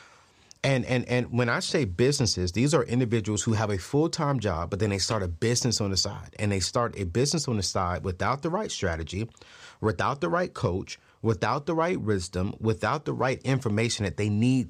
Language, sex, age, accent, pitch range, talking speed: English, male, 30-49, American, 100-135 Hz, 210 wpm